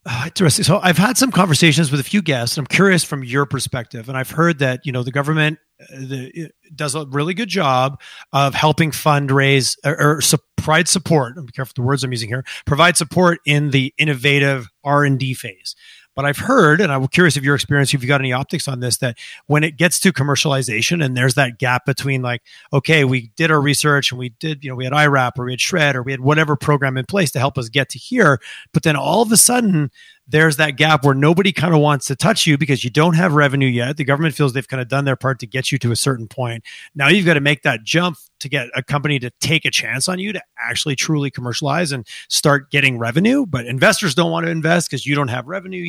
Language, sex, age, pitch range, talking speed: English, male, 30-49, 135-165 Hz, 245 wpm